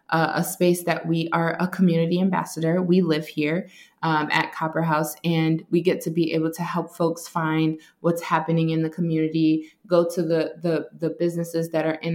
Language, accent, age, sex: English, American, 20-39, female